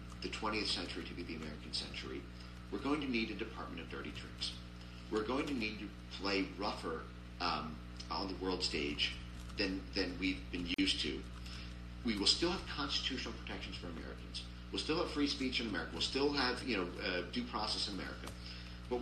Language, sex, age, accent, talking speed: English, male, 40-59, American, 195 wpm